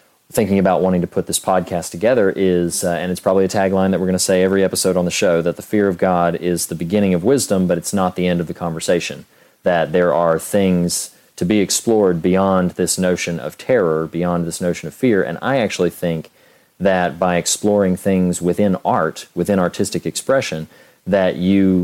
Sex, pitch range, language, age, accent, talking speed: male, 85-95 Hz, English, 40-59, American, 205 wpm